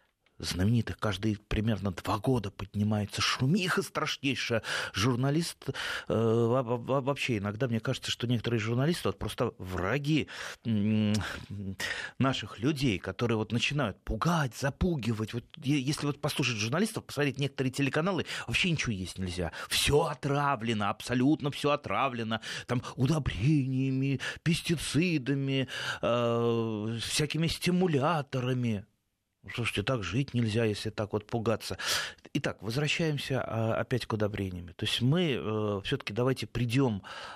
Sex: male